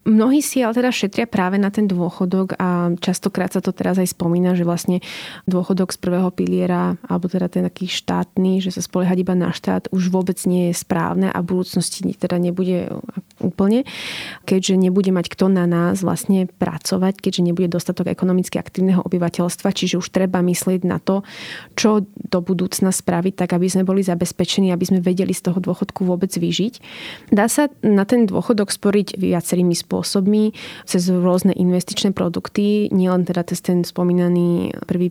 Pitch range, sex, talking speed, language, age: 175-190 Hz, female, 170 wpm, Slovak, 20-39